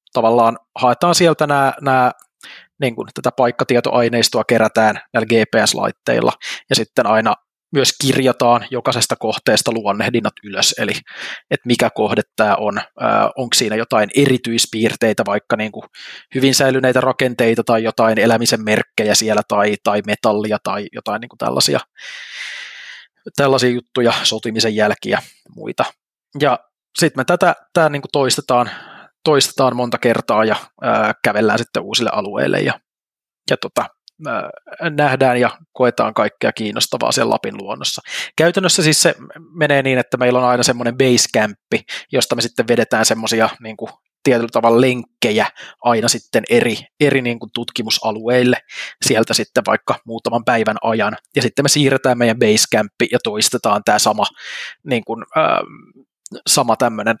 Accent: native